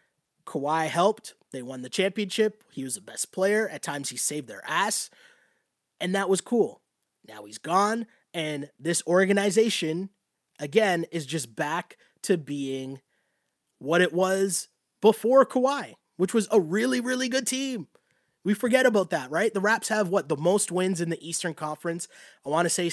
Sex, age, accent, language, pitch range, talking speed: male, 20-39, American, English, 155-205 Hz, 165 wpm